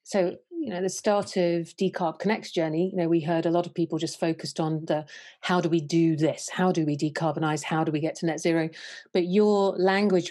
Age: 40-59